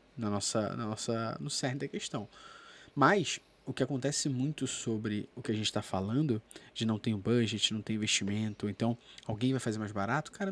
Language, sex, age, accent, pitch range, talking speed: Portuguese, male, 20-39, Brazilian, 110-160 Hz, 205 wpm